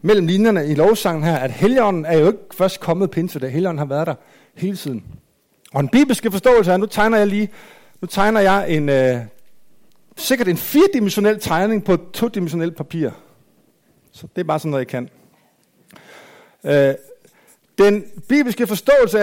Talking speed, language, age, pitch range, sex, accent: 165 wpm, Danish, 60-79, 180-235 Hz, male, native